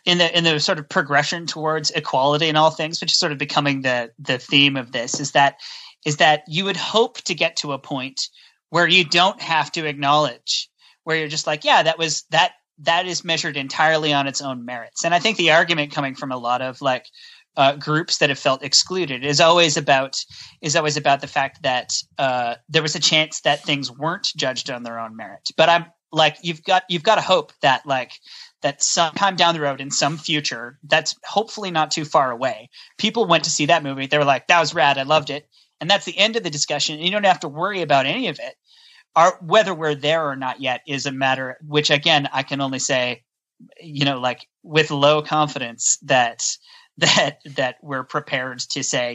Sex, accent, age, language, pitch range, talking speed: male, American, 30-49, English, 140-170 Hz, 220 wpm